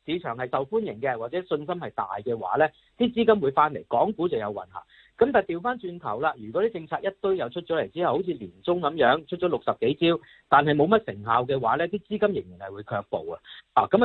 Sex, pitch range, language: male, 120-180 Hz, Chinese